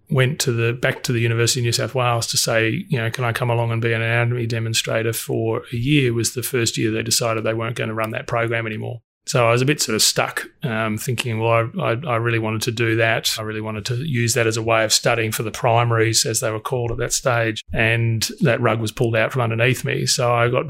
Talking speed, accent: 265 wpm, Australian